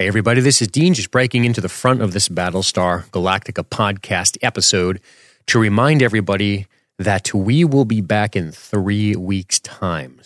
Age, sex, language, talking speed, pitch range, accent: 30-49, male, English, 160 wpm, 90-110 Hz, American